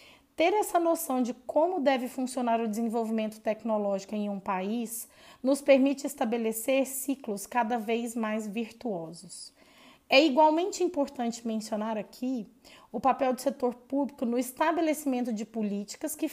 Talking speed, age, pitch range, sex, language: 130 wpm, 20-39, 220-280 Hz, female, Portuguese